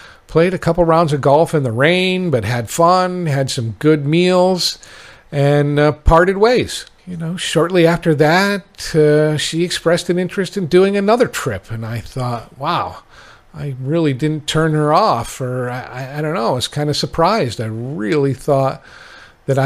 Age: 50-69